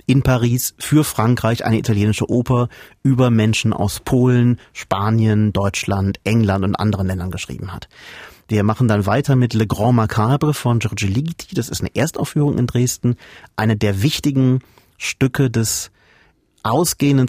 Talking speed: 145 wpm